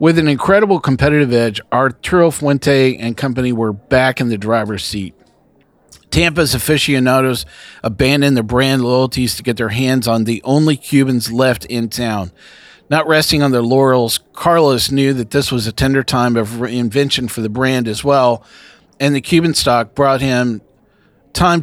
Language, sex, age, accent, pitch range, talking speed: English, male, 40-59, American, 115-135 Hz, 165 wpm